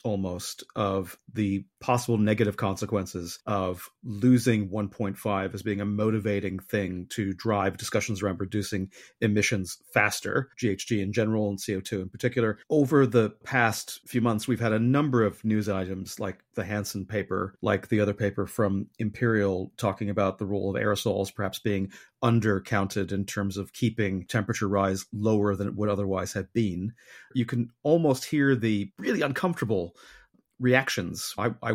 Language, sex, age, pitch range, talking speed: English, male, 30-49, 100-125 Hz, 155 wpm